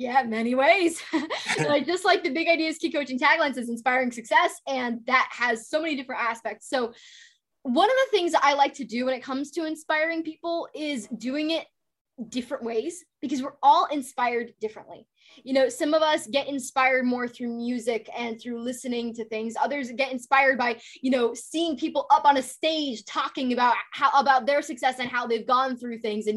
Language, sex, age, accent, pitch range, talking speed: English, female, 10-29, American, 230-300 Hz, 205 wpm